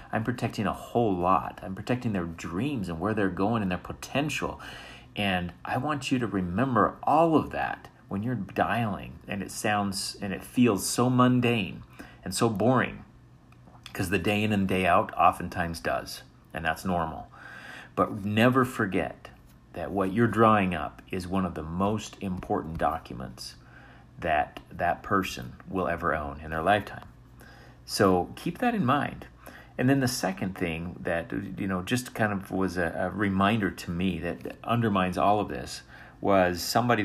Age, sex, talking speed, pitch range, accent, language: 40-59, male, 170 wpm, 85-105 Hz, American, English